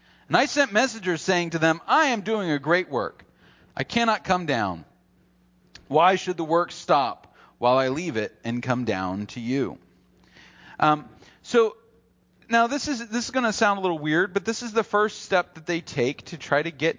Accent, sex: American, male